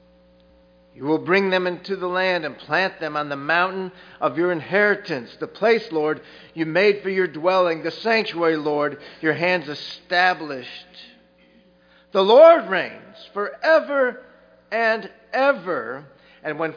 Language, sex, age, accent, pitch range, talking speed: English, male, 50-69, American, 130-185 Hz, 135 wpm